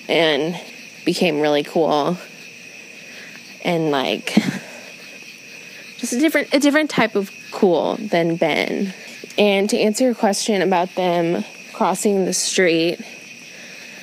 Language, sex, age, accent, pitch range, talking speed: English, female, 20-39, American, 175-235 Hz, 110 wpm